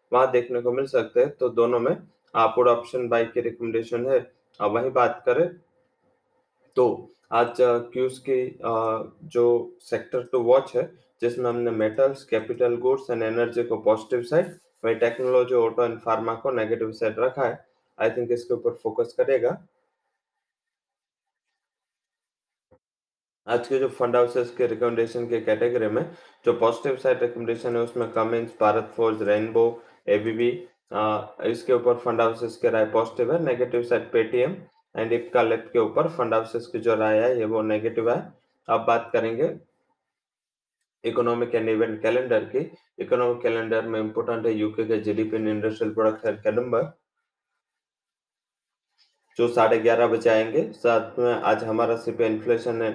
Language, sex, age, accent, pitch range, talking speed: English, male, 20-39, Indian, 115-125 Hz, 110 wpm